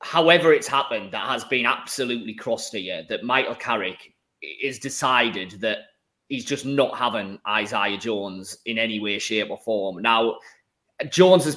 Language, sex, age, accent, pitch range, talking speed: English, male, 30-49, British, 120-160 Hz, 150 wpm